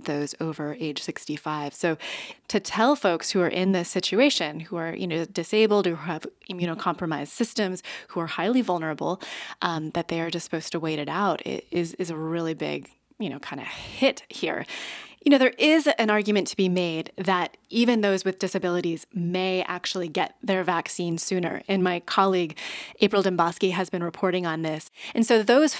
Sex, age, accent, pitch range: female, 20-39, American, 165-200 Hz